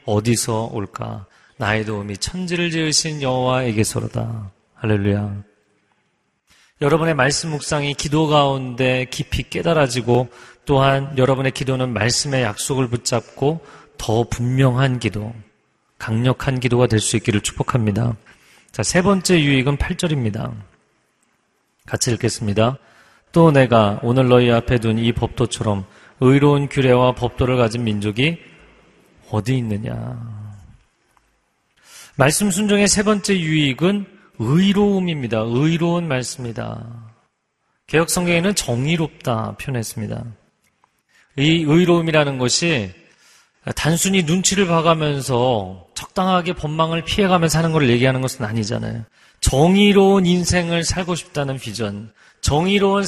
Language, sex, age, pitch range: Korean, male, 30-49, 115-160 Hz